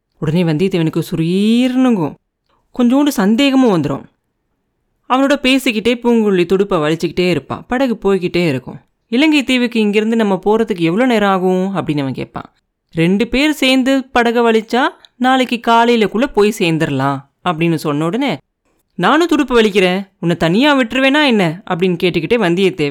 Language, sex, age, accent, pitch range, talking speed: Tamil, female, 30-49, native, 175-245 Hz, 125 wpm